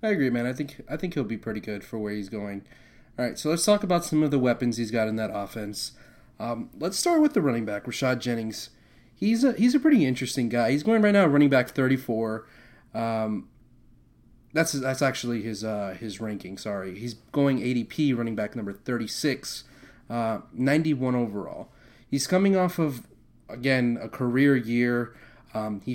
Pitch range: 115-140 Hz